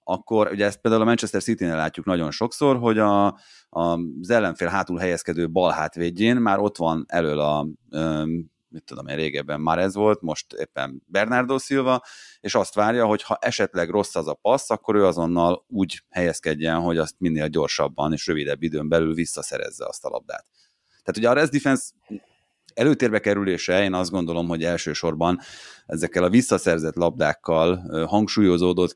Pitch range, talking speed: 80-100 Hz, 165 wpm